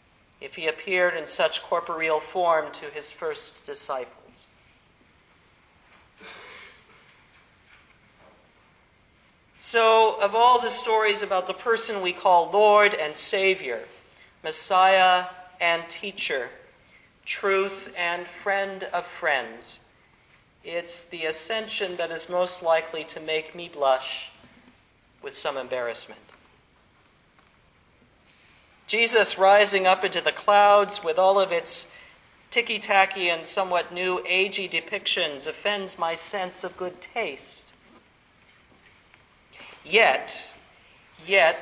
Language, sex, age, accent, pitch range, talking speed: English, male, 40-59, American, 170-210 Hz, 100 wpm